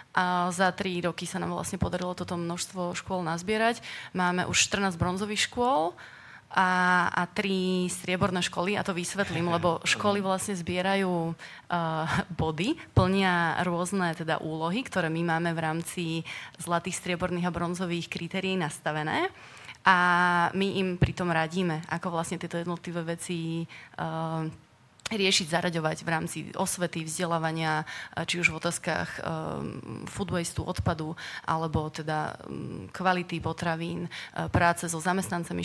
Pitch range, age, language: 165-180 Hz, 30-49, Slovak